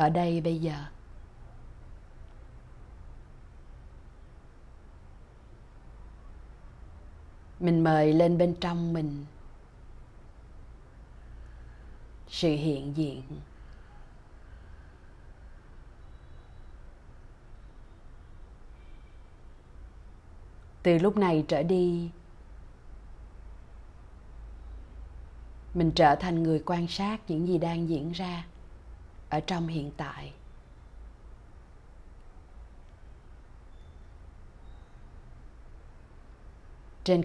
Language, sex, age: Vietnamese, female, 30-49